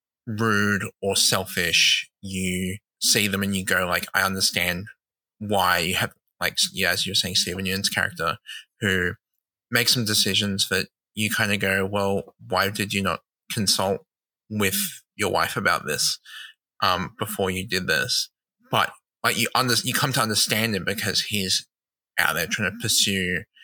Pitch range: 95-110 Hz